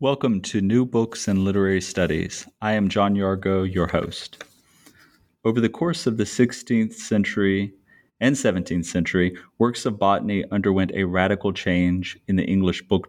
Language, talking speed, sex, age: English, 155 wpm, male, 30-49